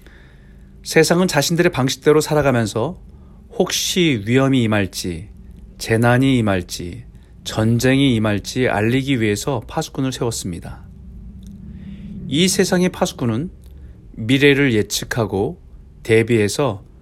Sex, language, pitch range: male, Korean, 90-140 Hz